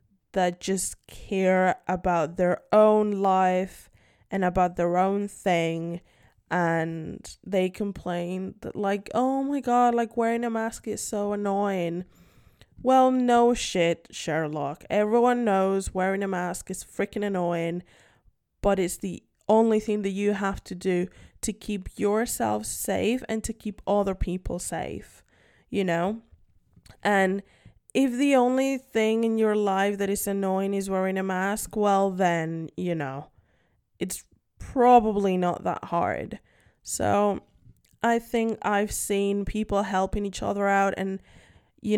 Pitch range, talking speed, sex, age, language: 185-215 Hz, 140 wpm, female, 10-29, English